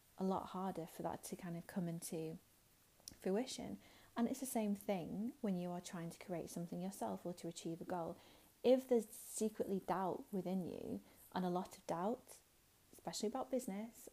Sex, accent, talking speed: female, British, 185 wpm